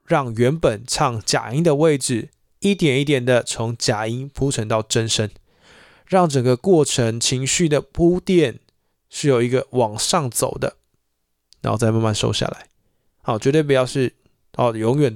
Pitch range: 115-140 Hz